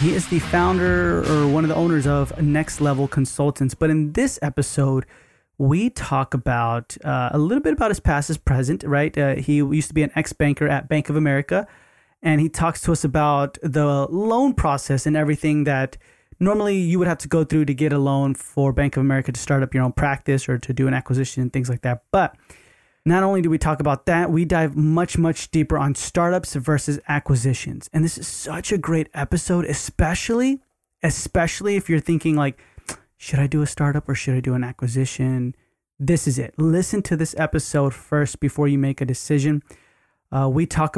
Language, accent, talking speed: English, American, 205 wpm